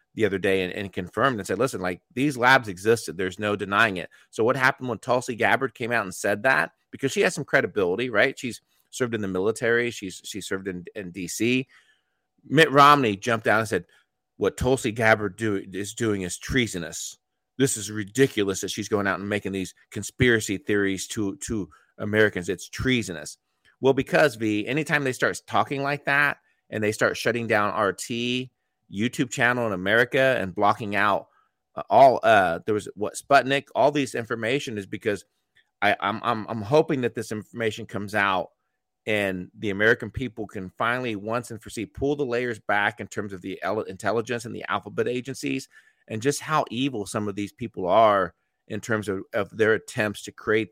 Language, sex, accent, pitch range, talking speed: English, male, American, 100-125 Hz, 190 wpm